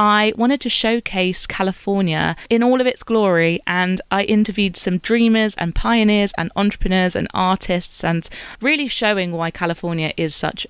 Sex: female